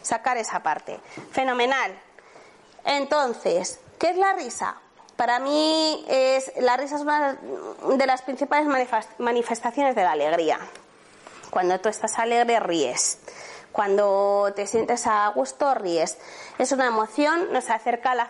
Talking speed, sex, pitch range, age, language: 135 wpm, female, 225-300 Hz, 20-39, Spanish